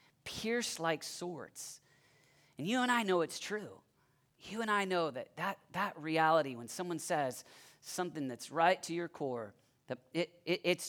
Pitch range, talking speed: 140-175 Hz, 170 wpm